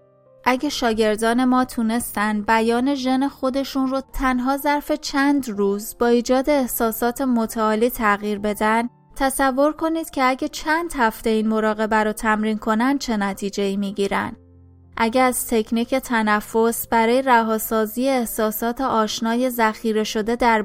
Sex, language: female, Persian